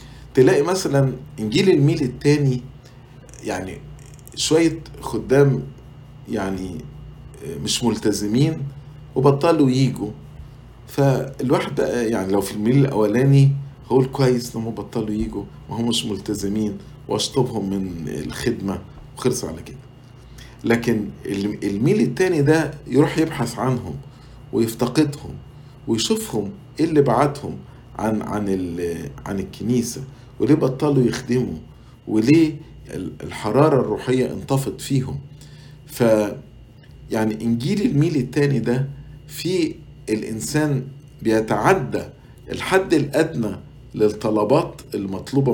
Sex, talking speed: male, 95 wpm